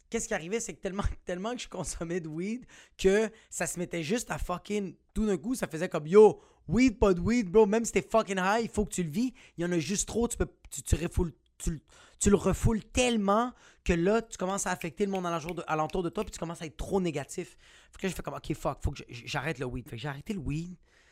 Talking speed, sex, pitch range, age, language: 275 wpm, male, 160-205 Hz, 30-49, French